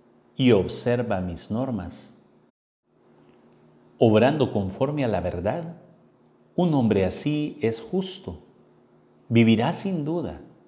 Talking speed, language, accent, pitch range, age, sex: 95 wpm, Spanish, Mexican, 100-130 Hz, 50-69, male